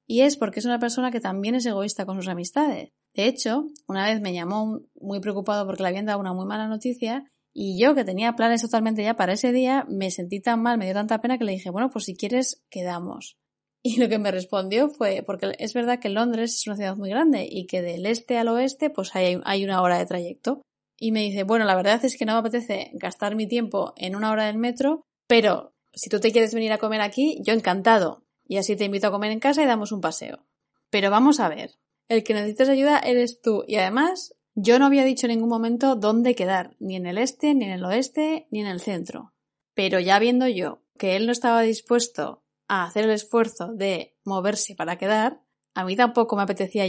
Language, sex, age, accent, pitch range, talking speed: Spanish, female, 20-39, Spanish, 195-245 Hz, 230 wpm